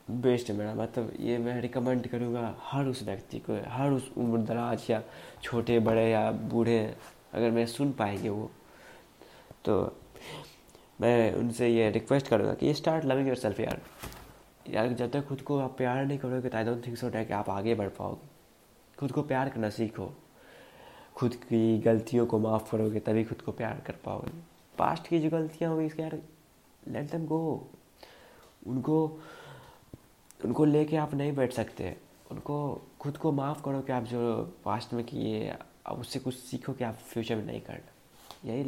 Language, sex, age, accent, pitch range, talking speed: Hindi, male, 20-39, native, 110-130 Hz, 175 wpm